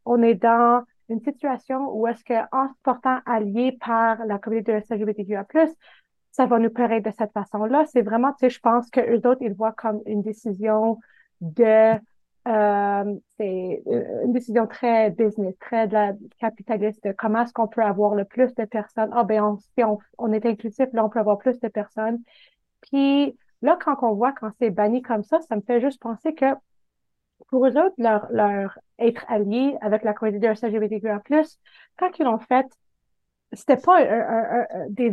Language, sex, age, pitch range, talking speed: French, female, 30-49, 220-260 Hz, 195 wpm